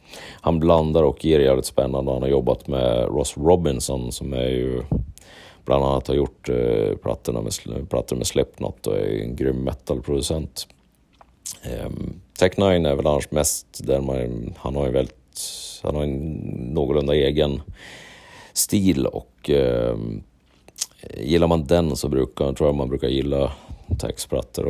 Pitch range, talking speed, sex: 65-80 Hz, 150 wpm, male